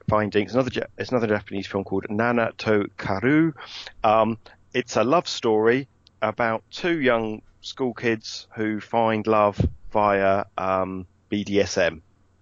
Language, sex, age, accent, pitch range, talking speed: English, male, 40-59, British, 100-120 Hz, 130 wpm